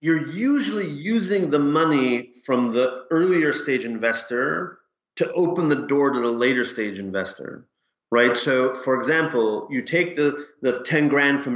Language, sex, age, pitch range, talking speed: English, male, 30-49, 115-140 Hz, 155 wpm